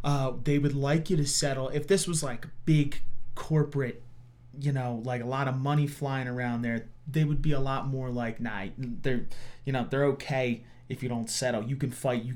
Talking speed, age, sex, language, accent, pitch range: 215 wpm, 30-49, male, English, American, 115-135 Hz